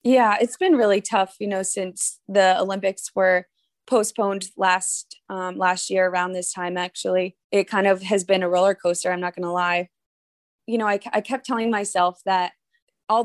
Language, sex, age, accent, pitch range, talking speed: English, female, 20-39, American, 175-195 Hz, 190 wpm